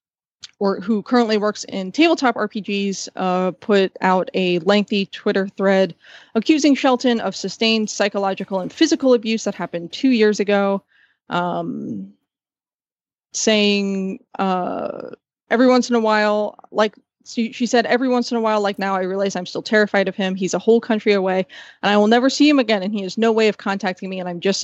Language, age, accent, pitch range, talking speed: English, 20-39, American, 195-240 Hz, 185 wpm